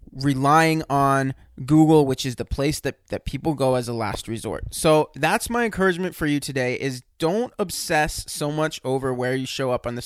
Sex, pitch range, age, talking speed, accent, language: male, 130-165 Hz, 20-39, 205 wpm, American, English